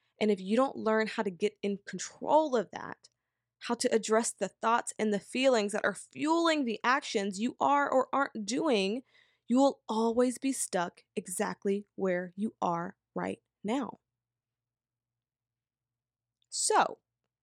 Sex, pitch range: female, 175-235 Hz